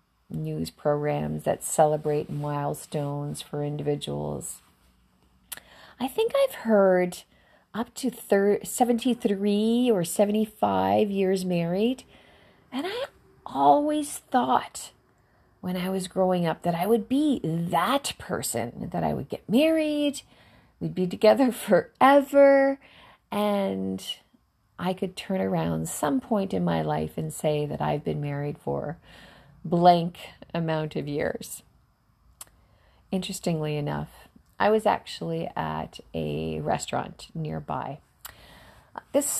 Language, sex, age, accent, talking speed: English, female, 40-59, American, 115 wpm